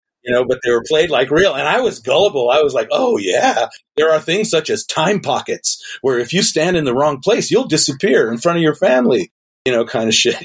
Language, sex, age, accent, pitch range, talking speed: English, male, 40-59, American, 115-150 Hz, 255 wpm